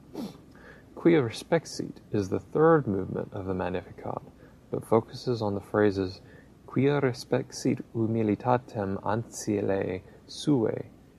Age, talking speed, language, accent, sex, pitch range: 30-49, 100 wpm, English, American, male, 95-120 Hz